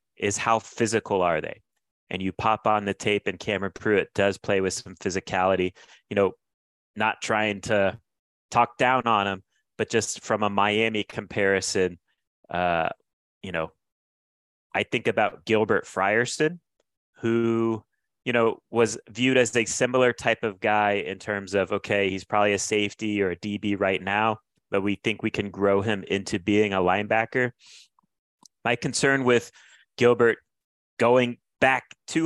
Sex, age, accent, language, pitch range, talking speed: male, 30-49, American, English, 95-115 Hz, 155 wpm